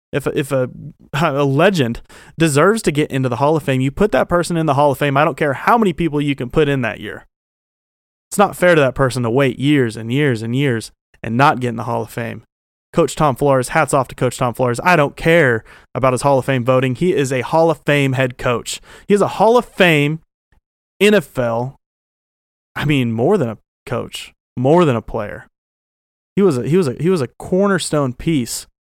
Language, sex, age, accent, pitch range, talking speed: English, male, 30-49, American, 120-150 Hz, 230 wpm